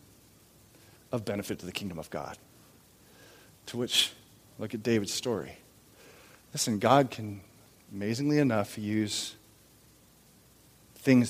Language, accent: English, American